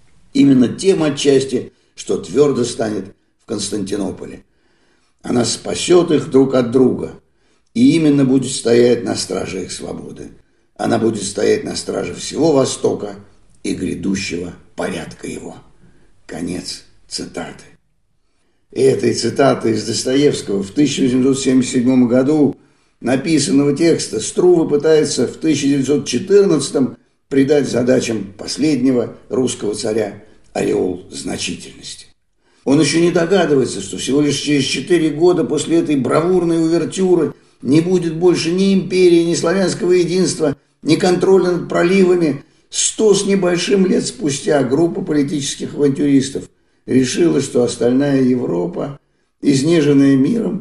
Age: 50-69